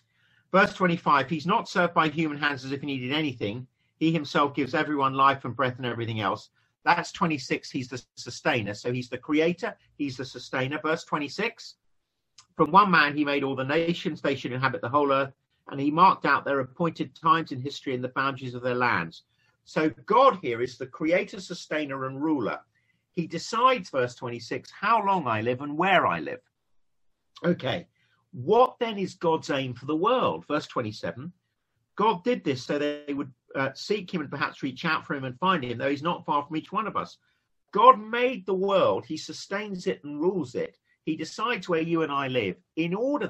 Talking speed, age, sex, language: 200 wpm, 50-69, male, English